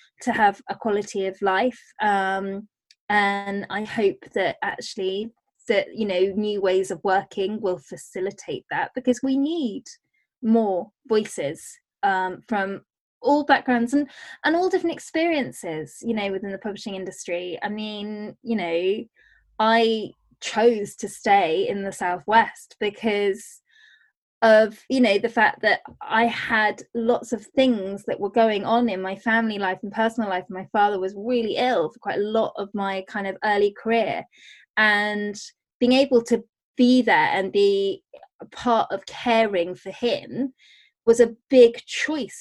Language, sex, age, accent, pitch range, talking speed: English, female, 20-39, British, 200-255 Hz, 155 wpm